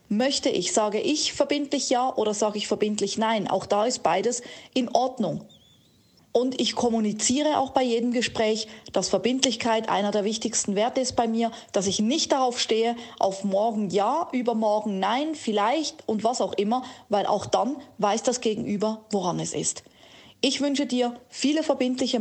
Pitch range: 210-250 Hz